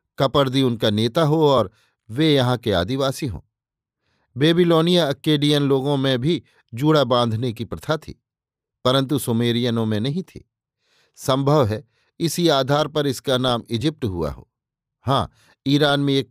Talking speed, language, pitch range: 145 wpm, Hindi, 115-150 Hz